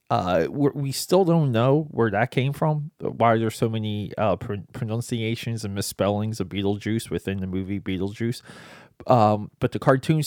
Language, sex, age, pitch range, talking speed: English, male, 20-39, 105-135 Hz, 165 wpm